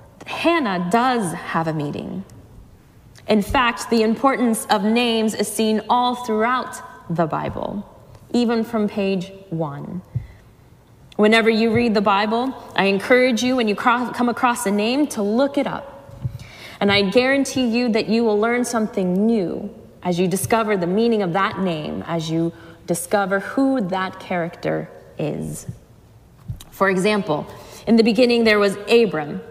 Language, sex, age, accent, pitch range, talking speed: English, female, 20-39, American, 180-230 Hz, 145 wpm